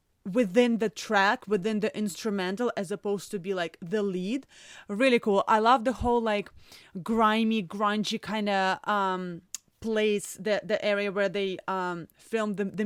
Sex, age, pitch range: female, 20-39, 205-240 Hz